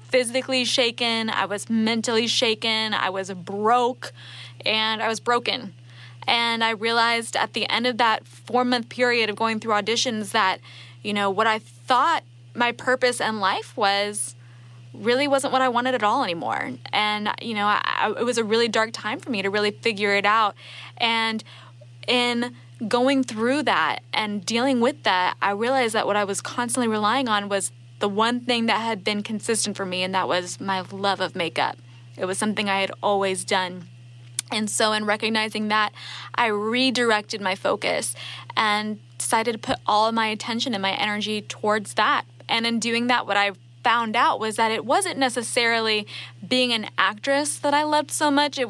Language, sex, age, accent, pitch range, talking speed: English, female, 10-29, American, 195-240 Hz, 185 wpm